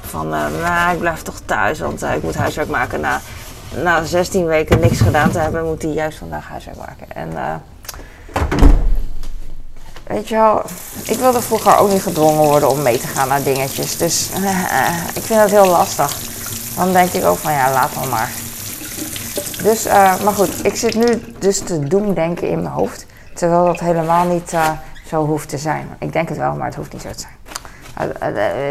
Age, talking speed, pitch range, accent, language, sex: 20-39, 200 wpm, 145-175 Hz, Dutch, Dutch, female